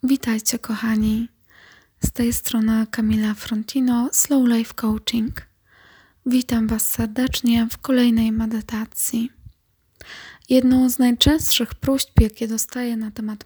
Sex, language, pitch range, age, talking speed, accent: female, Polish, 215-245 Hz, 20-39, 105 wpm, native